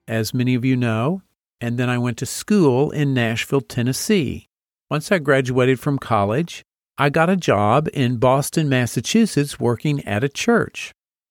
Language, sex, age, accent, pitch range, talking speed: English, male, 50-69, American, 120-155 Hz, 160 wpm